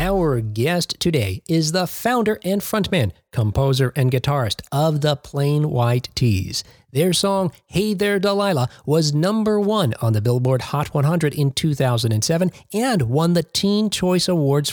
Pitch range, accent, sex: 125-185 Hz, American, male